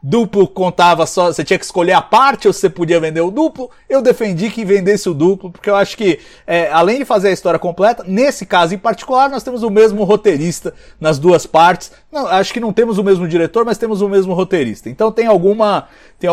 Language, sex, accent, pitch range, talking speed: Portuguese, male, Brazilian, 165-210 Hz, 225 wpm